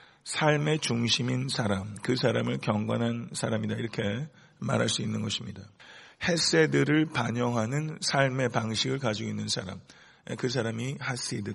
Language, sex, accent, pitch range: Korean, male, native, 115-140 Hz